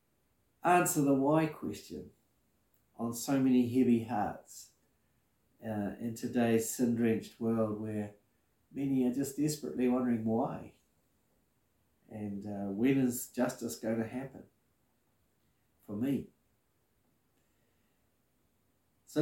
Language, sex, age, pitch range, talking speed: English, male, 50-69, 110-150 Hz, 100 wpm